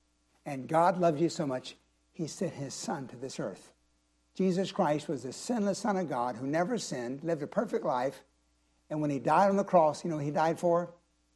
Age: 60-79